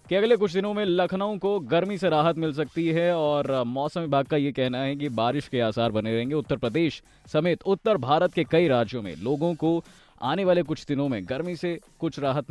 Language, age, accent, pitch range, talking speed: Hindi, 20-39, native, 115-170 Hz, 220 wpm